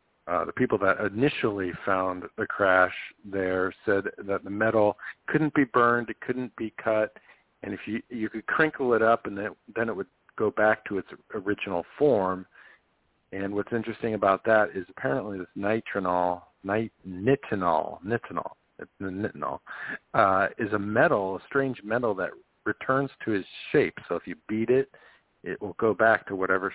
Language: English